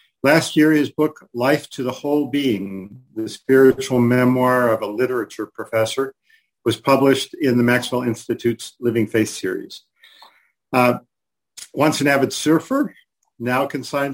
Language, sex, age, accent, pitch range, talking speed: English, male, 50-69, American, 120-145 Hz, 135 wpm